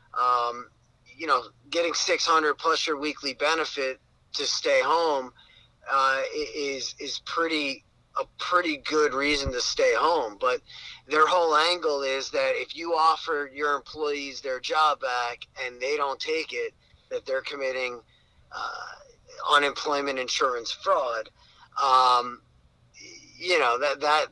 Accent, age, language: American, 30-49, English